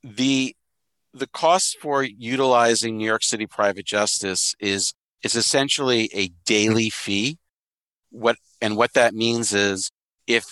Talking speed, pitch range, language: 130 wpm, 100-120 Hz, English